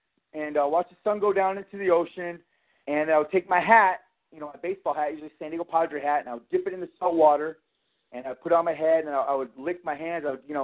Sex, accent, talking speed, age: male, American, 300 wpm, 30-49